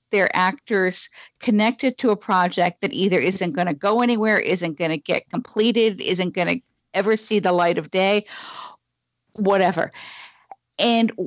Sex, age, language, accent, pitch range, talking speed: female, 50-69, English, American, 185-240 Hz, 155 wpm